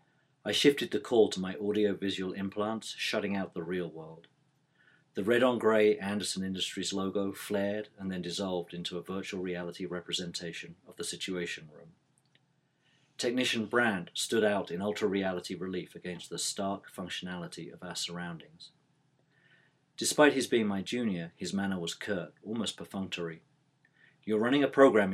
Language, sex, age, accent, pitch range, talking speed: English, male, 40-59, British, 90-135 Hz, 145 wpm